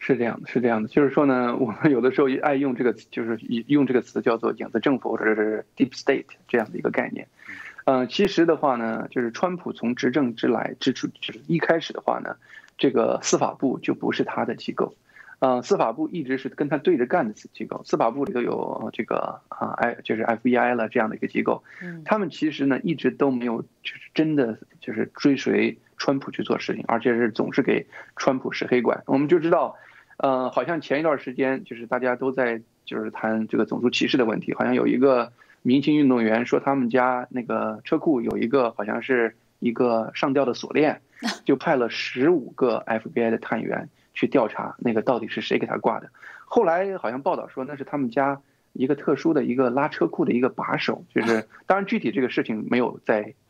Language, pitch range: Chinese, 120-155 Hz